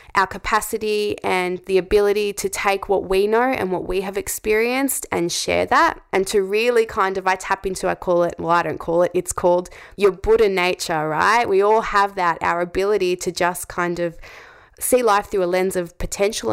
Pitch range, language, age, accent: 175-215 Hz, English, 20-39, Australian